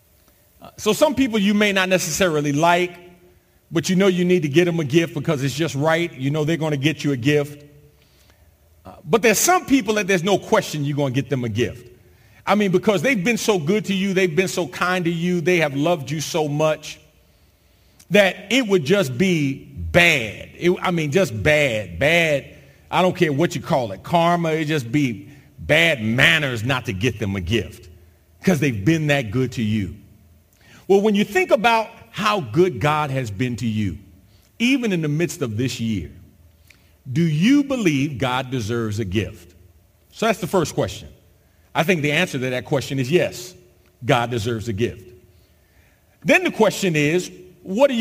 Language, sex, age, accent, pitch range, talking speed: English, male, 40-59, American, 115-190 Hz, 195 wpm